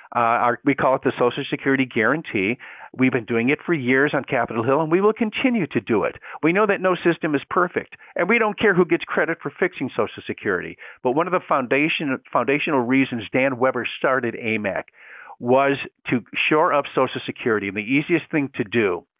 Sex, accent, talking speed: male, American, 205 wpm